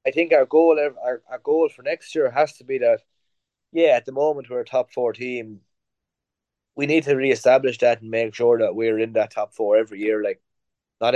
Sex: male